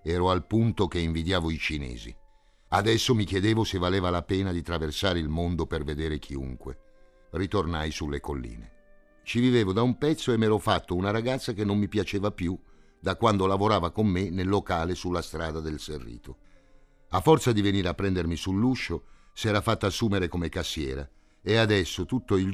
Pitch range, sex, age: 80-100 Hz, male, 50-69